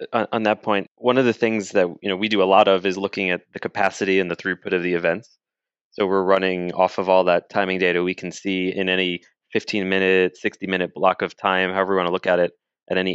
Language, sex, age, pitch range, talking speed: English, male, 20-39, 90-100 Hz, 245 wpm